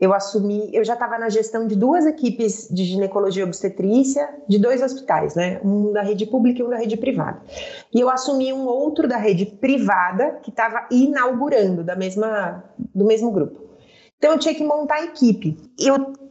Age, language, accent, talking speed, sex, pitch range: 30-49, Portuguese, Brazilian, 185 wpm, female, 200-280 Hz